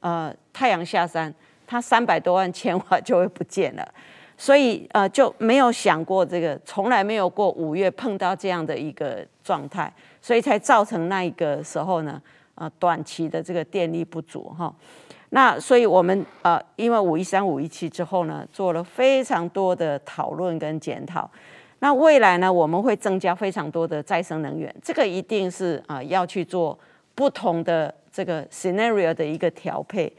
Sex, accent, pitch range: female, American, 170-225 Hz